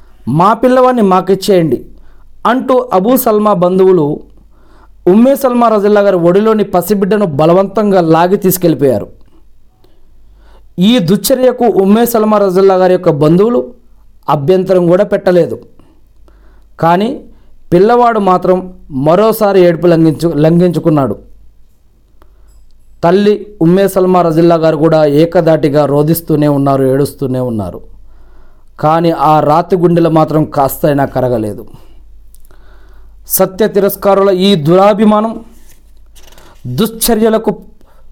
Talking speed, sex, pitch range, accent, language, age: 90 wpm, male, 150-195 Hz, native, Telugu, 40-59